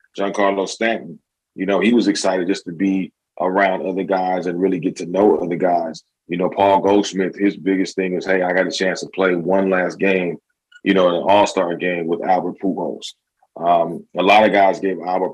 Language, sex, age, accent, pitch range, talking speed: English, male, 30-49, American, 90-100 Hz, 205 wpm